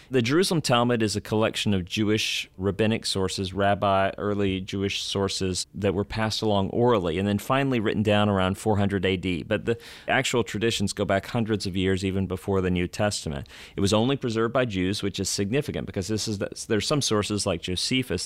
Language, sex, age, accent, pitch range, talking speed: English, male, 40-59, American, 95-110 Hz, 185 wpm